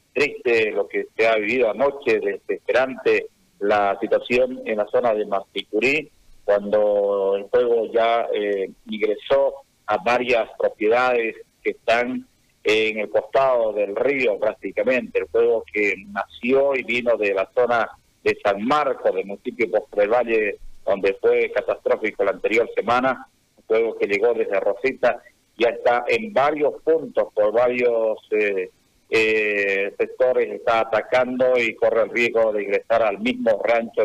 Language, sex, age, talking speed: Spanish, male, 40-59, 145 wpm